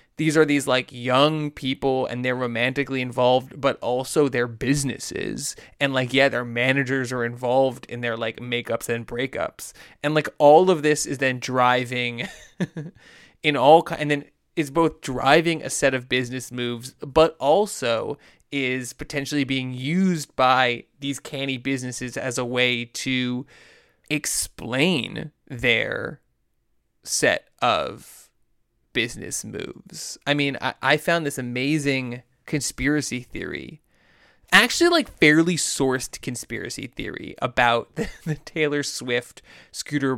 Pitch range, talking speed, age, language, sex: 125-155 Hz, 135 wpm, 20-39, English, male